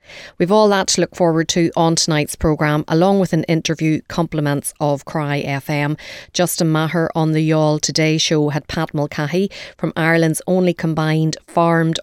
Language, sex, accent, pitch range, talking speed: English, female, Irish, 150-170 Hz, 165 wpm